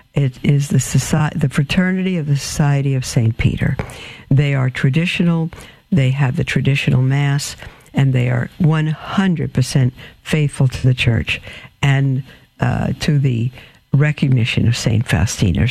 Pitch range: 130-160 Hz